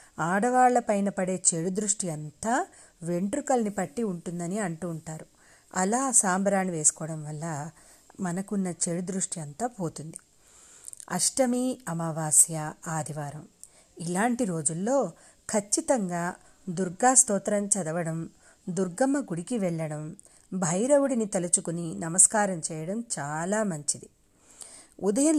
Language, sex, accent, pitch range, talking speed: Telugu, female, native, 170-220 Hz, 85 wpm